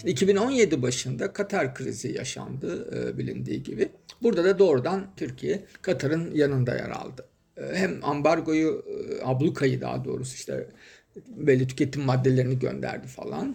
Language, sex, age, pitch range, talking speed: Turkish, male, 50-69, 125-160 Hz, 115 wpm